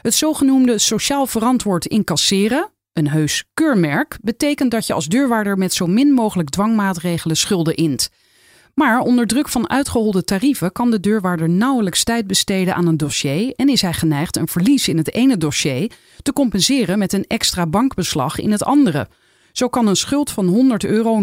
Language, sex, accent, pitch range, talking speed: Dutch, female, Dutch, 170-250 Hz, 170 wpm